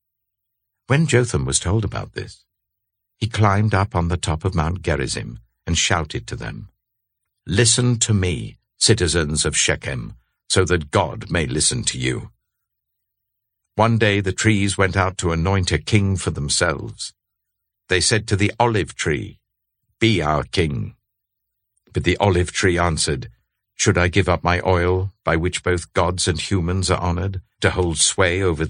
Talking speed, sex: 160 wpm, male